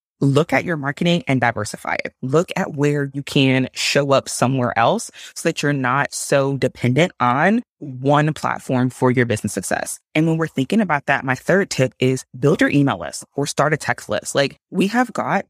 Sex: female